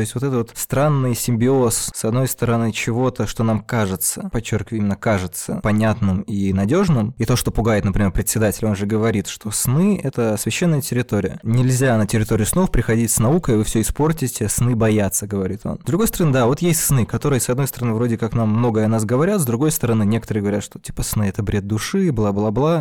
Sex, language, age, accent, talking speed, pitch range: male, Russian, 20-39, native, 205 wpm, 105-125 Hz